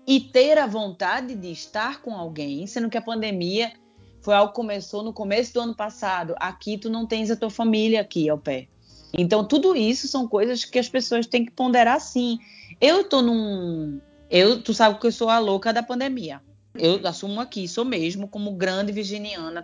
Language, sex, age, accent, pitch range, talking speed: Portuguese, female, 20-39, Brazilian, 175-240 Hz, 195 wpm